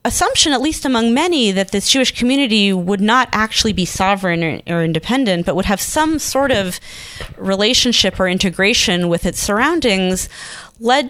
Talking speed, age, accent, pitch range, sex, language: 160 wpm, 30-49, American, 180-240 Hz, female, English